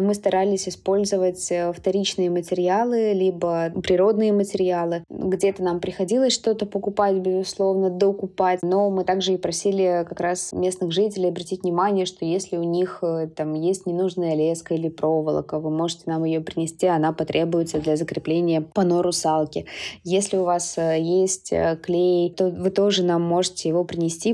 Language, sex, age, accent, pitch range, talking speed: Russian, female, 20-39, native, 170-195 Hz, 145 wpm